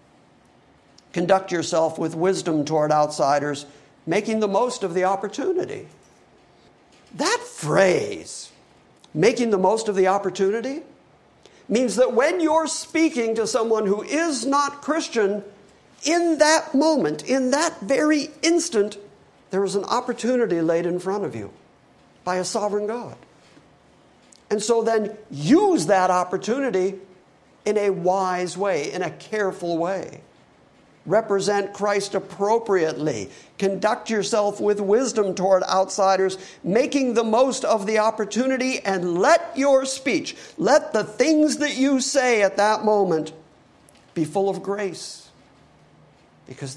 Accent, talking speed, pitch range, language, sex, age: American, 125 wpm, 175-250 Hz, English, male, 60-79